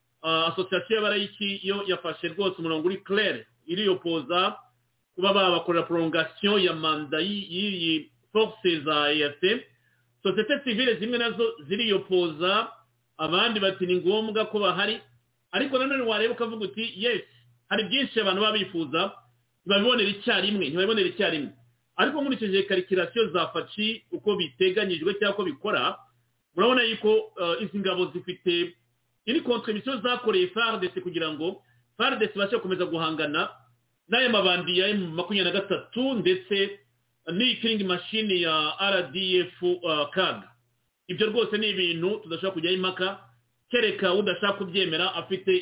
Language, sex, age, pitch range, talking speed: English, male, 50-69, 165-205 Hz, 90 wpm